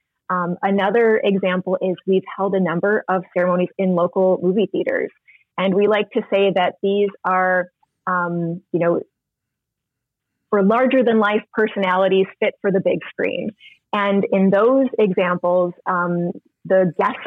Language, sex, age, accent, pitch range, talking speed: English, female, 20-39, American, 180-210 Hz, 140 wpm